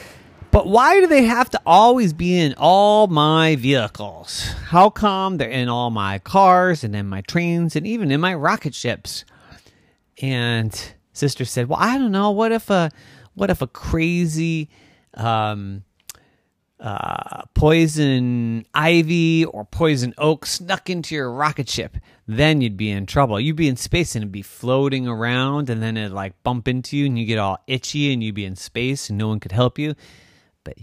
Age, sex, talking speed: 30-49, male, 180 wpm